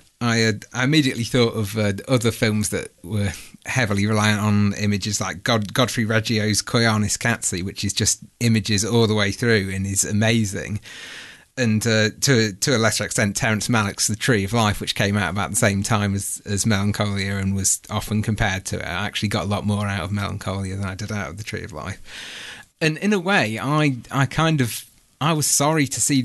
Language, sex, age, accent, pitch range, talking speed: English, male, 30-49, British, 105-125 Hz, 210 wpm